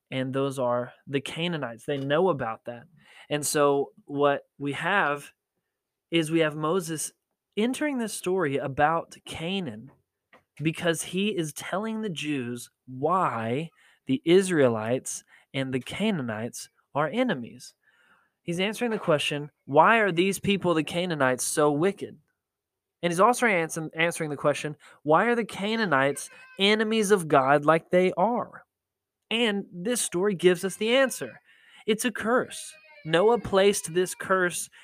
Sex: male